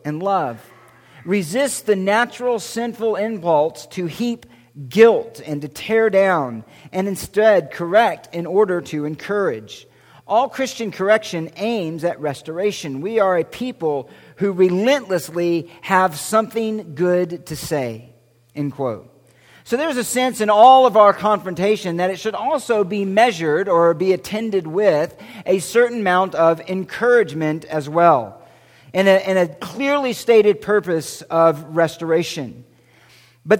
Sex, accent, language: male, American, English